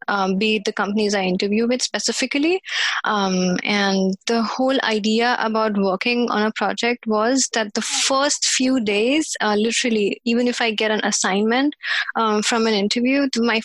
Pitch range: 210-255 Hz